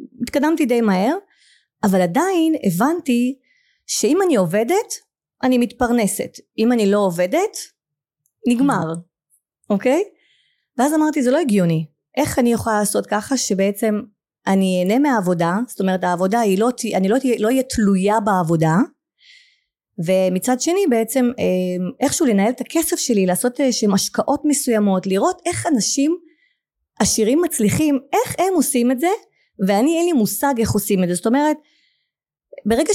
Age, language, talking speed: 30-49, Hebrew, 135 wpm